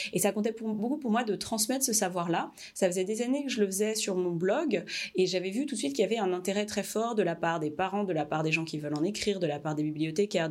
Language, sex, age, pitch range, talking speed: French, female, 30-49, 175-220 Hz, 310 wpm